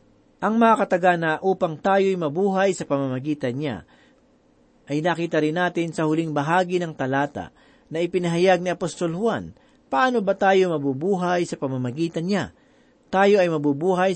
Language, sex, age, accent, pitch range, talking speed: Filipino, male, 40-59, native, 145-190 Hz, 140 wpm